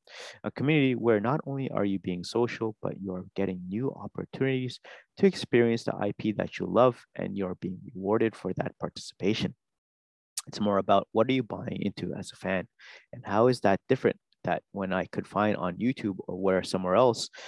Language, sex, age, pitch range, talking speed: English, male, 30-49, 95-125 Hz, 185 wpm